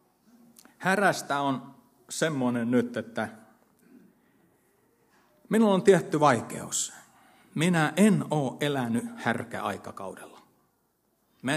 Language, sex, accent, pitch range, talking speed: Finnish, male, native, 115-150 Hz, 80 wpm